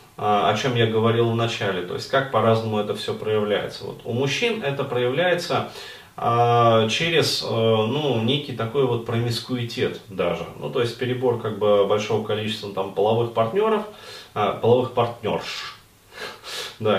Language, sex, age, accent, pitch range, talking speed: Russian, male, 20-39, native, 110-135 Hz, 150 wpm